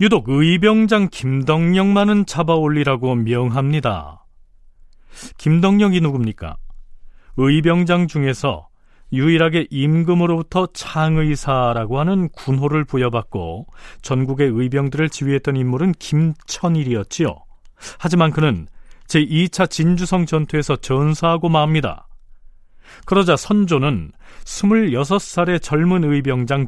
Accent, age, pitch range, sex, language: native, 40-59, 120-175 Hz, male, Korean